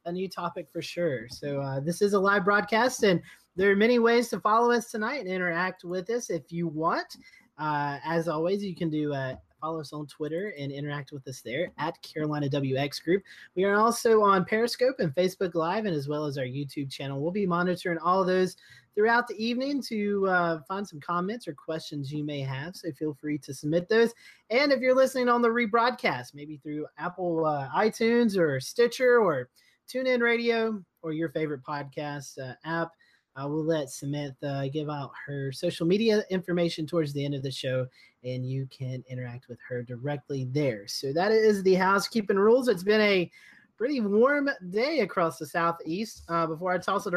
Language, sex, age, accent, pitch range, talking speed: English, male, 30-49, American, 150-210 Hz, 200 wpm